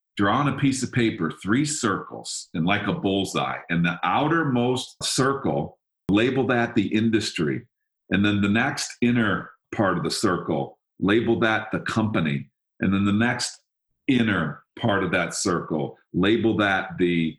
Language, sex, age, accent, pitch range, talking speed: English, male, 50-69, American, 95-120 Hz, 155 wpm